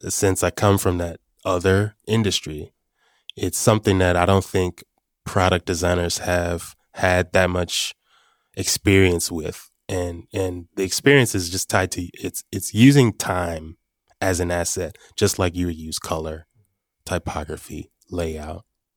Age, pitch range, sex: 20-39, 90-105 Hz, male